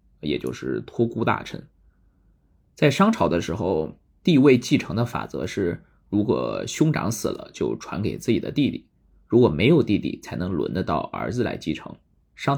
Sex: male